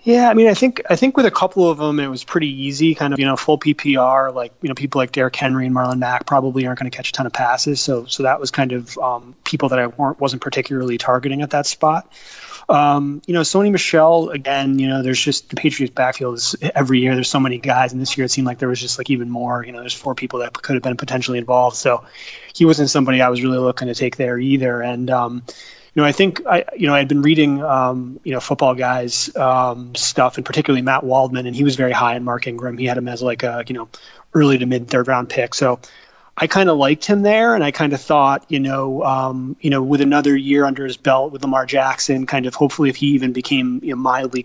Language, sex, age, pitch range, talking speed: English, male, 20-39, 125-145 Hz, 260 wpm